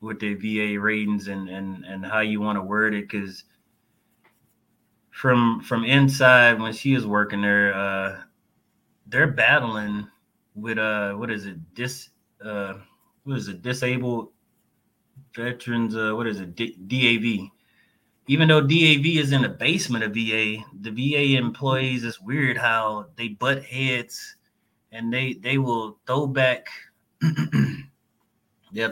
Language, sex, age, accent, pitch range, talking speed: English, male, 20-39, American, 105-125 Hz, 140 wpm